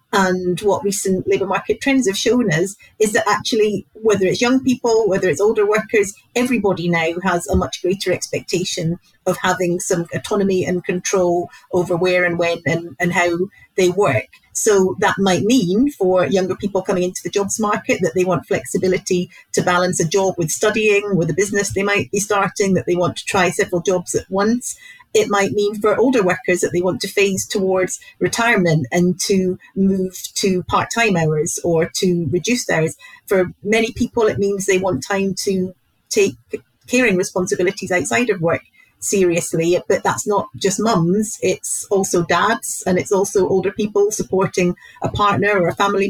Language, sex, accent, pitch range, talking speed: English, female, British, 180-210 Hz, 180 wpm